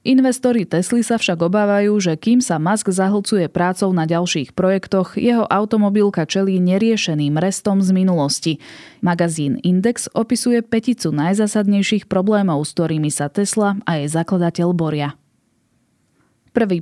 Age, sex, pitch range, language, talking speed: 20-39, female, 170-210 Hz, Slovak, 130 wpm